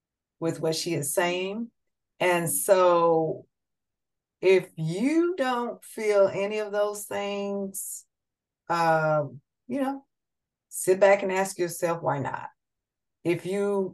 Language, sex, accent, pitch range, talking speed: English, female, American, 155-200 Hz, 115 wpm